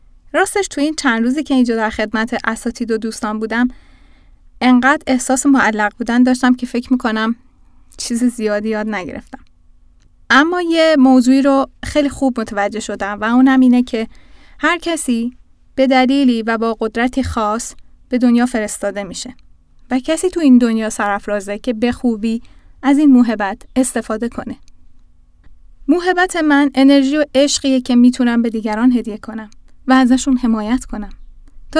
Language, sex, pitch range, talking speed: Arabic, female, 220-275 Hz, 150 wpm